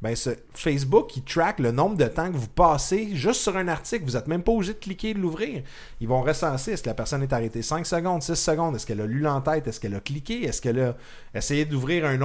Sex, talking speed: male, 270 wpm